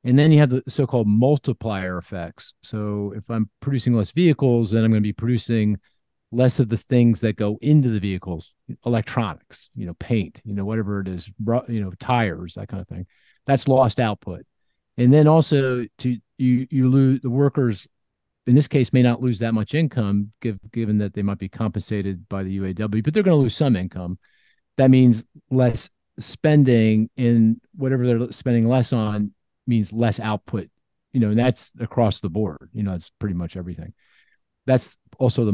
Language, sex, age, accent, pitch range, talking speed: English, male, 40-59, American, 105-130 Hz, 190 wpm